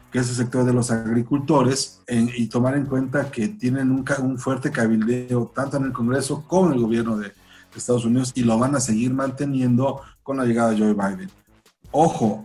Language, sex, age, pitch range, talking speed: Spanish, male, 40-59, 115-135 Hz, 200 wpm